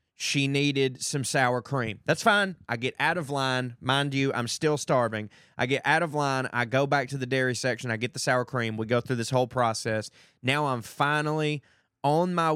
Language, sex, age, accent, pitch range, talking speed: English, male, 20-39, American, 120-145 Hz, 215 wpm